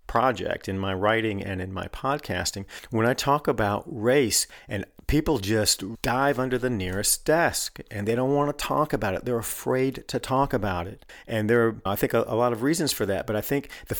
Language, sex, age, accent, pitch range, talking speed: English, male, 40-59, American, 95-120 Hz, 220 wpm